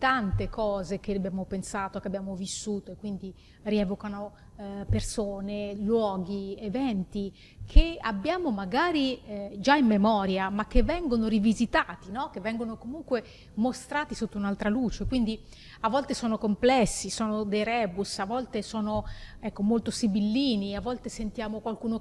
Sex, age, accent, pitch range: female, 30-49, native, 205-240 Hz